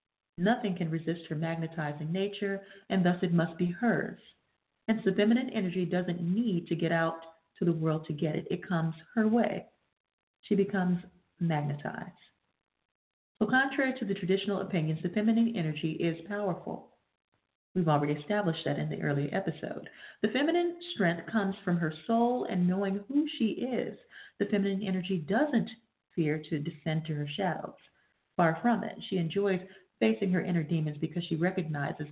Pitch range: 165-205 Hz